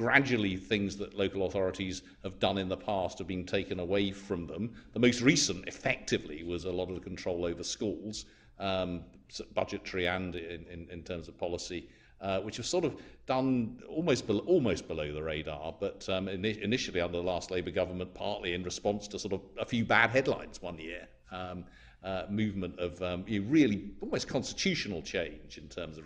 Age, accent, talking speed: 50-69, British, 190 wpm